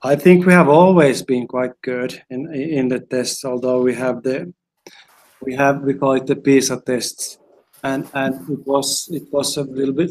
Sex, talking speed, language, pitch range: male, 195 wpm, English, 130-155 Hz